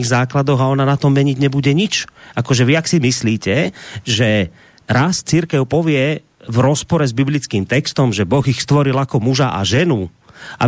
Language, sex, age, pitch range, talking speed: Slovak, male, 30-49, 120-160 Hz, 175 wpm